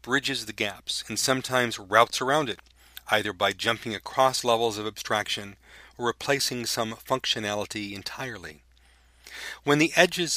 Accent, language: American, English